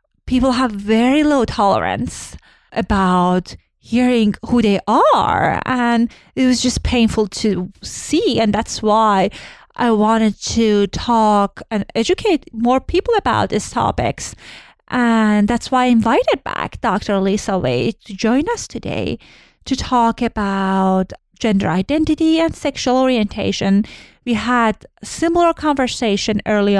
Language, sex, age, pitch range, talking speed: English, female, 30-49, 200-255 Hz, 130 wpm